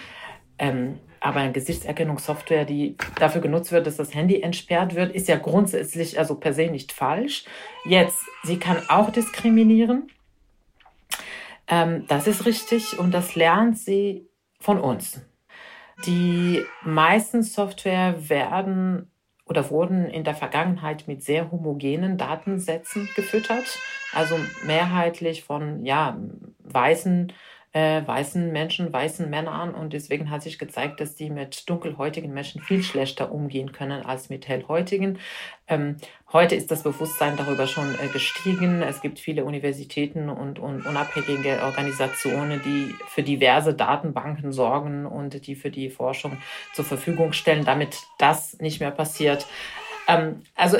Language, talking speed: German, 130 wpm